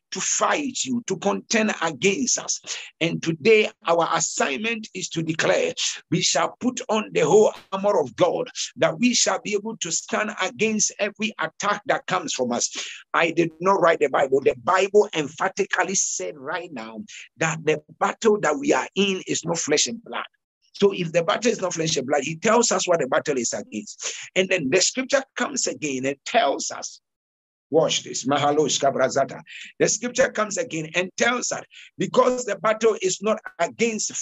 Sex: male